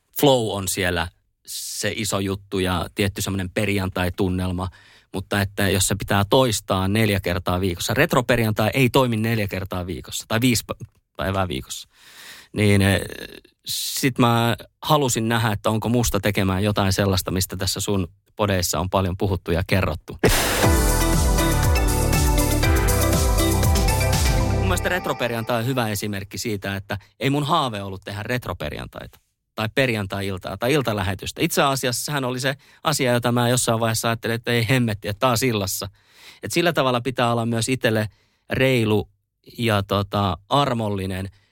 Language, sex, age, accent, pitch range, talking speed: Finnish, male, 30-49, native, 100-120 Hz, 135 wpm